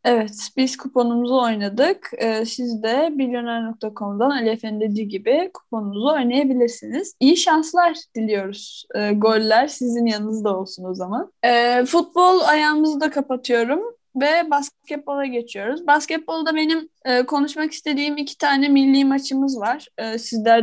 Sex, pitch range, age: female, 225-305 Hz, 10-29